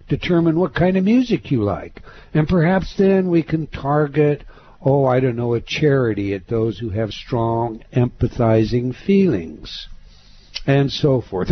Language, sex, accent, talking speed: English, male, American, 150 wpm